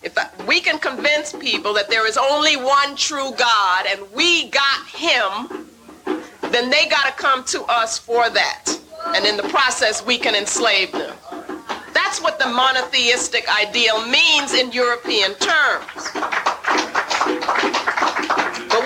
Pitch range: 250-330 Hz